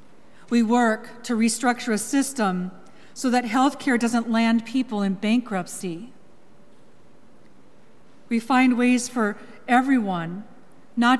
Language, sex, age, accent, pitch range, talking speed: English, female, 40-59, American, 205-245 Hz, 115 wpm